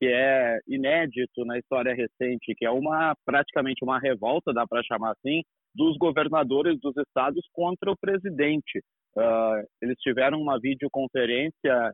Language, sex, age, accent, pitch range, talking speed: Portuguese, male, 30-49, Brazilian, 130-175 Hz, 140 wpm